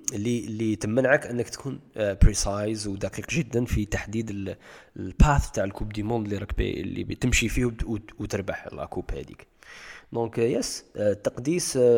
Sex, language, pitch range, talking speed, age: male, Arabic, 100-125 Hz, 135 wpm, 20-39